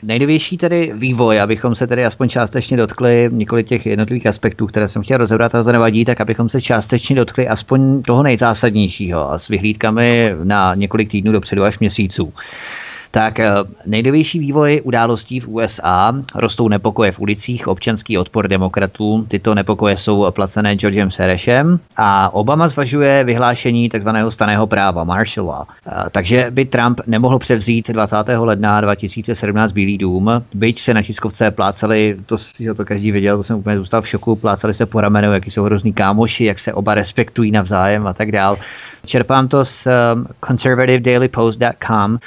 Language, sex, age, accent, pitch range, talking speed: Czech, male, 30-49, native, 105-120 Hz, 155 wpm